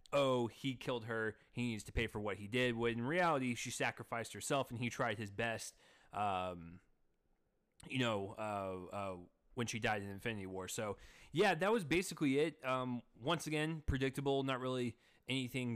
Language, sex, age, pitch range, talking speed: English, male, 30-49, 110-135 Hz, 180 wpm